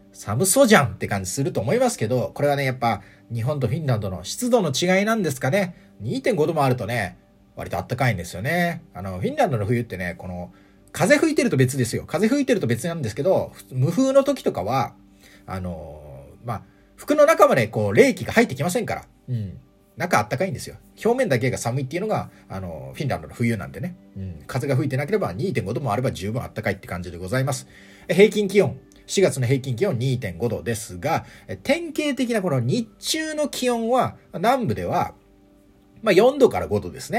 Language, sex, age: Japanese, male, 30-49